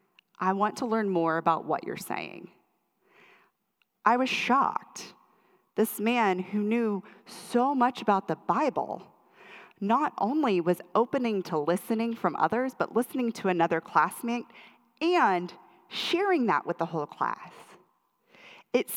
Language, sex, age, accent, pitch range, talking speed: English, female, 30-49, American, 170-220 Hz, 135 wpm